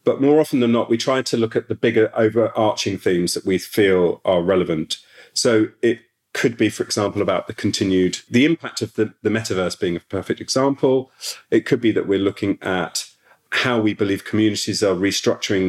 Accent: British